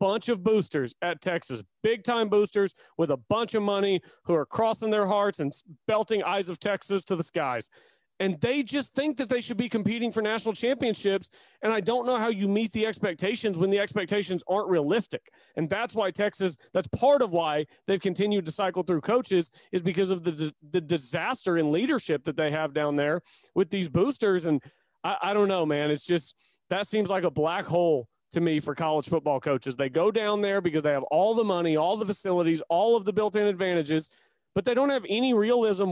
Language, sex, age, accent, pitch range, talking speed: English, male, 40-59, American, 165-220 Hz, 210 wpm